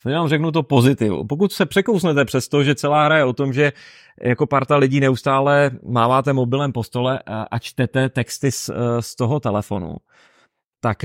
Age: 30-49